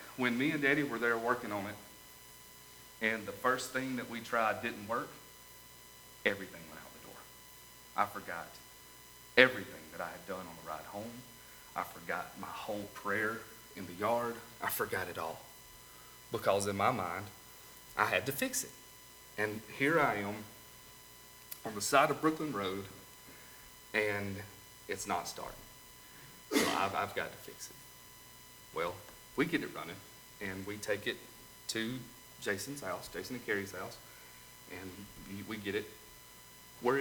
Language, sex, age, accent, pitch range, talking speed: English, male, 40-59, American, 100-125 Hz, 155 wpm